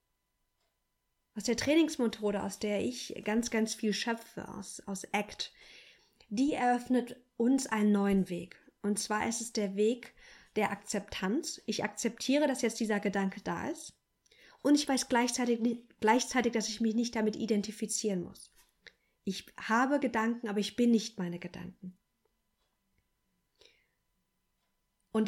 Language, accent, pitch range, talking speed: German, German, 205-240 Hz, 135 wpm